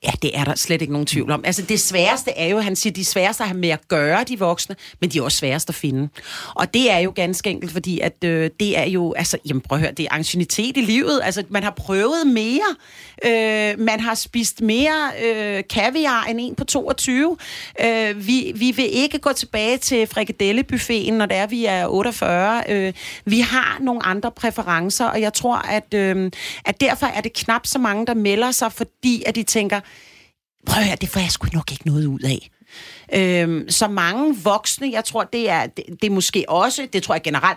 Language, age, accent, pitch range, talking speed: Danish, 40-59, native, 175-230 Hz, 215 wpm